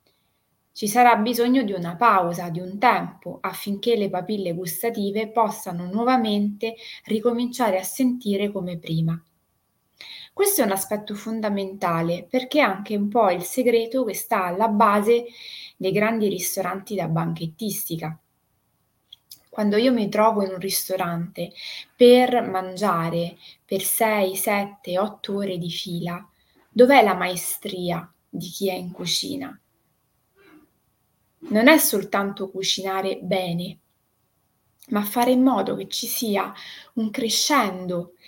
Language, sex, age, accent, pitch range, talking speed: Italian, female, 20-39, native, 185-225 Hz, 125 wpm